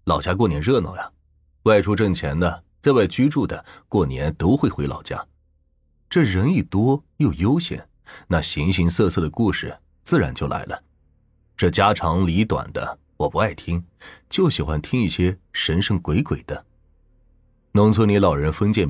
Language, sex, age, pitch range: Chinese, male, 30-49, 75-105 Hz